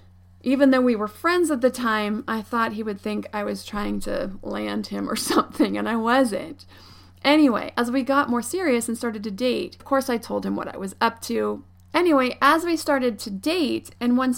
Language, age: English, 30-49